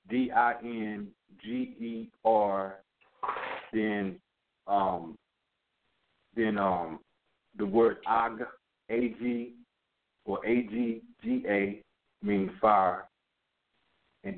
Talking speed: 95 wpm